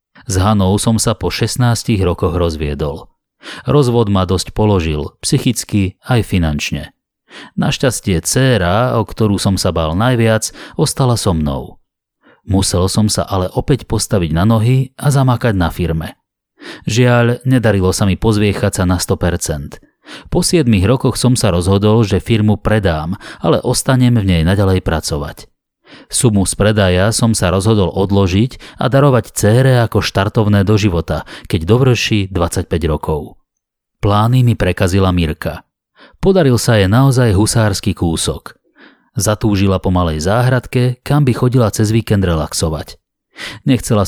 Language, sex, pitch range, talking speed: Slovak, male, 95-120 Hz, 135 wpm